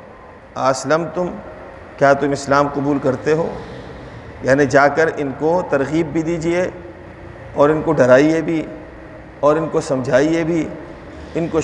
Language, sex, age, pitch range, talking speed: Urdu, male, 50-69, 140-170 Hz, 145 wpm